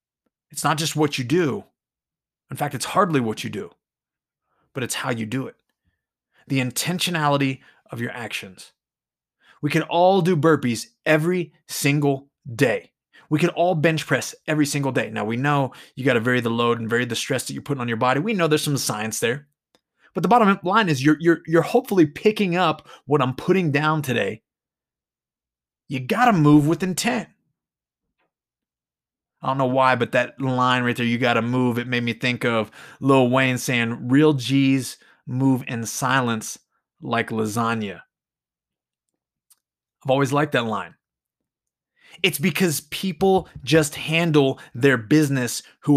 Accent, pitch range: American, 120-155 Hz